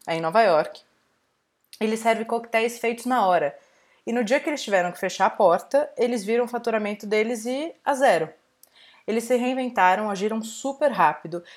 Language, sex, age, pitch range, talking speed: Portuguese, female, 20-39, 185-230 Hz, 175 wpm